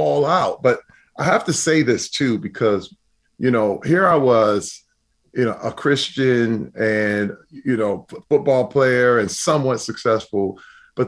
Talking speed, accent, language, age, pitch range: 155 wpm, American, English, 30-49, 105-130 Hz